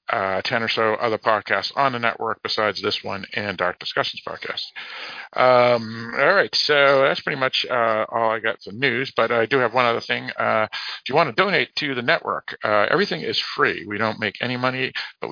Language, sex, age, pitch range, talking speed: English, male, 50-69, 115-135 Hz, 215 wpm